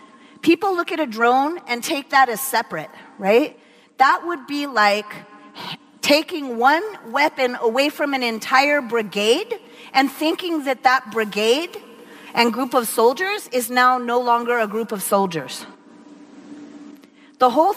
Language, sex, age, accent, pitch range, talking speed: German, female, 40-59, American, 225-285 Hz, 140 wpm